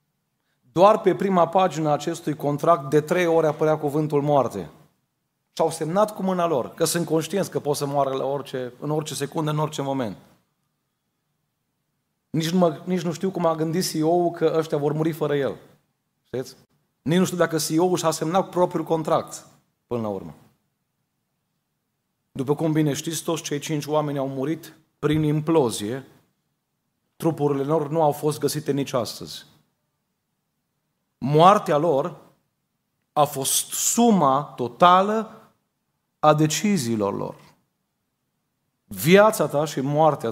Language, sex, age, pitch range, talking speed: Romanian, male, 30-49, 145-170 Hz, 140 wpm